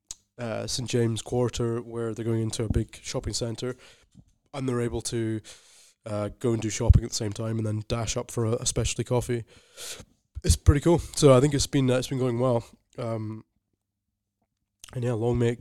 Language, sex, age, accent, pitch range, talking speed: English, male, 20-39, British, 110-125 Hz, 205 wpm